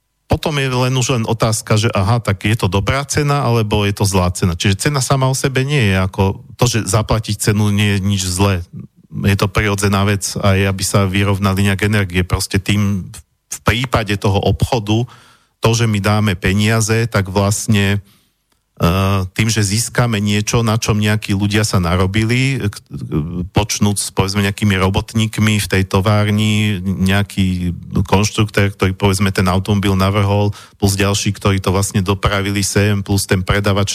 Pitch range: 100-110 Hz